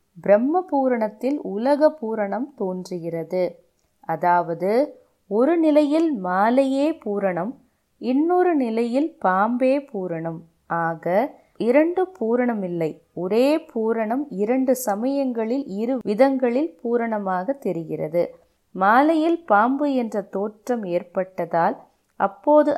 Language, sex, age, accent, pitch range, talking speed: Tamil, female, 20-39, native, 185-270 Hz, 80 wpm